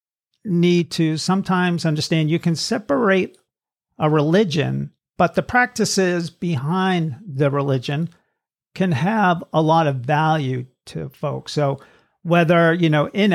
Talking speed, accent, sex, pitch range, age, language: 125 wpm, American, male, 145-180 Hz, 50-69, English